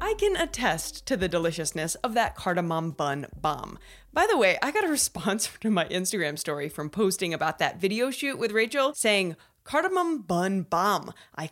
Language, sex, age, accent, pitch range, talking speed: English, female, 20-39, American, 175-275 Hz, 180 wpm